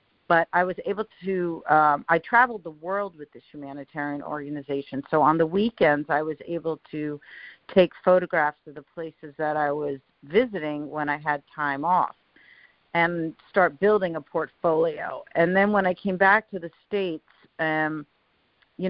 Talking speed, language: 160 wpm, English